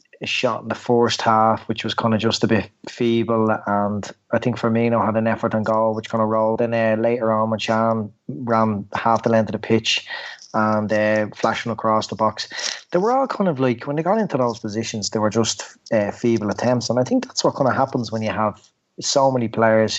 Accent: Irish